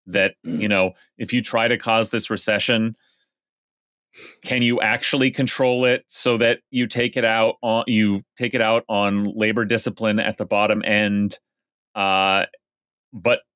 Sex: male